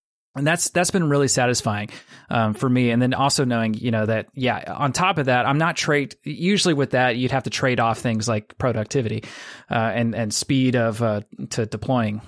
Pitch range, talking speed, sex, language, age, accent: 110-135 Hz, 210 wpm, male, English, 30-49, American